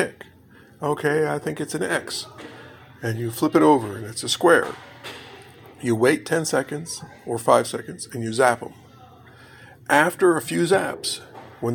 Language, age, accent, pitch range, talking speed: English, 50-69, American, 120-145 Hz, 160 wpm